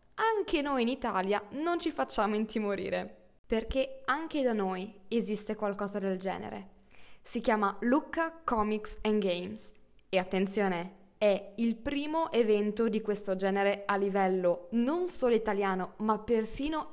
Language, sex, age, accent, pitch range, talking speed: Italian, female, 20-39, native, 200-265 Hz, 135 wpm